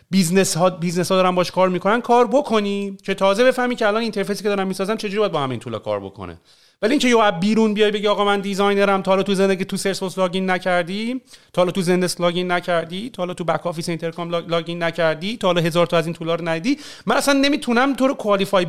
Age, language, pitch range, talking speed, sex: 40-59, Persian, 165-210 Hz, 230 wpm, male